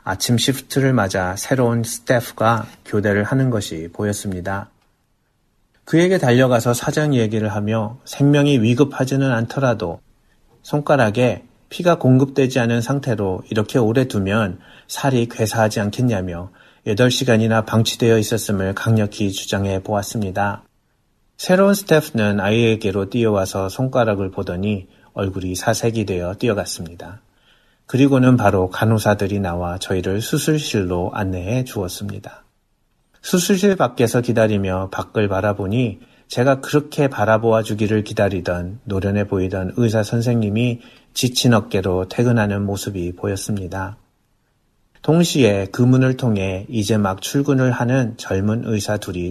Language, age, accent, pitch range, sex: Korean, 30-49, native, 100-125 Hz, male